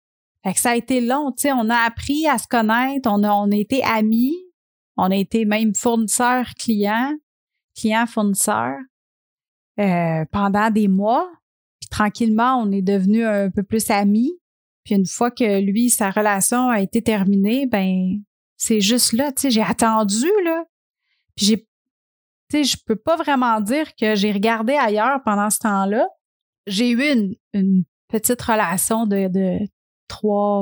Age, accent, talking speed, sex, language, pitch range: 30-49, Canadian, 160 wpm, female, French, 205-245 Hz